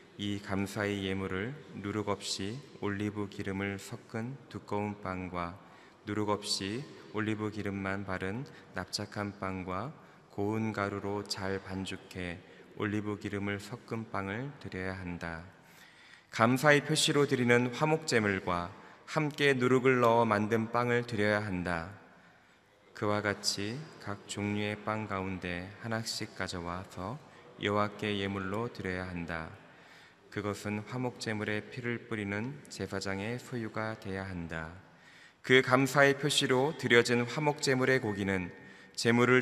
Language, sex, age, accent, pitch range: Korean, male, 20-39, native, 95-115 Hz